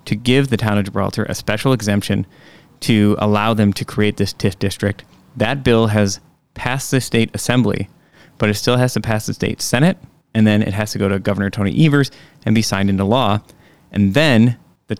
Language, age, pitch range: English, 20-39, 105-120 Hz